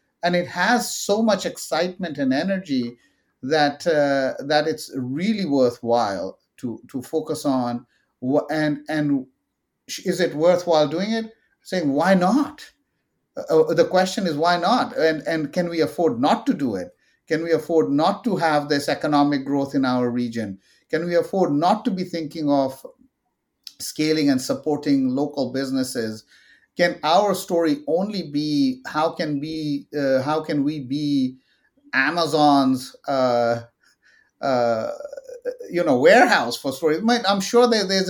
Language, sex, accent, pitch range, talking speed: English, male, Indian, 135-185 Hz, 145 wpm